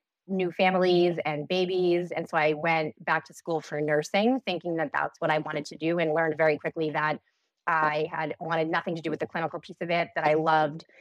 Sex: female